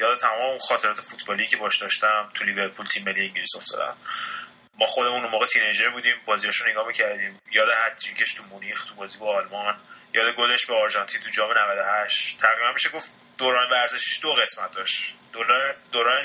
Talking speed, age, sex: 170 wpm, 20-39, male